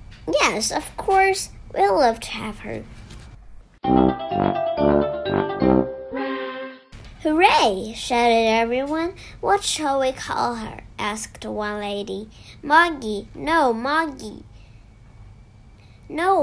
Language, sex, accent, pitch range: Chinese, male, American, 210-310 Hz